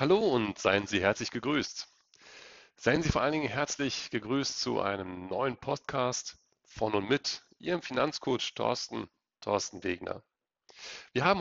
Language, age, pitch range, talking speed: German, 40-59, 110-140 Hz, 140 wpm